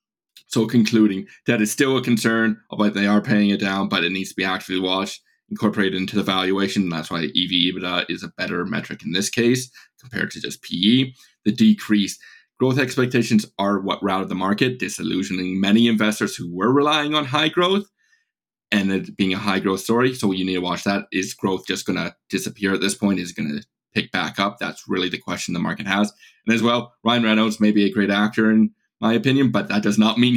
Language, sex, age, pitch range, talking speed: English, male, 20-39, 95-120 Hz, 220 wpm